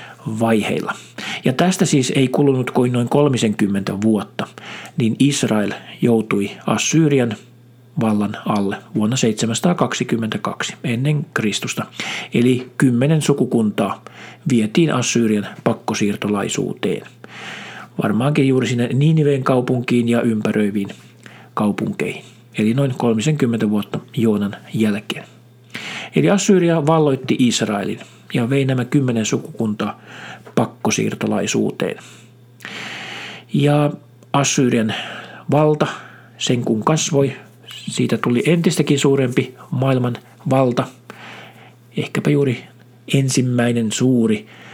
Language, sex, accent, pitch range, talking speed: Finnish, male, native, 110-135 Hz, 90 wpm